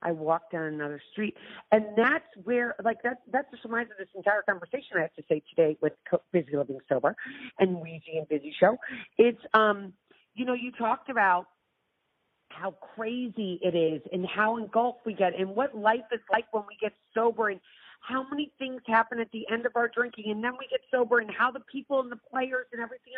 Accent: American